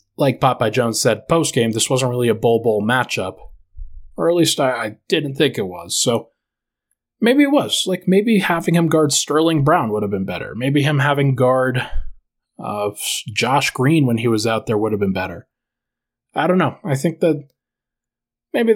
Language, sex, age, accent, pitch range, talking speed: English, male, 20-39, American, 110-140 Hz, 190 wpm